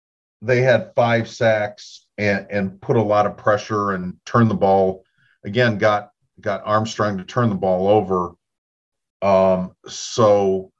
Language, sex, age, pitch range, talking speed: English, male, 40-59, 100-120 Hz, 145 wpm